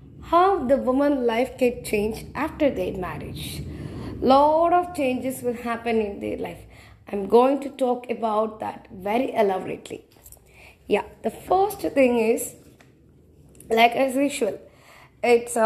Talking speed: 130 wpm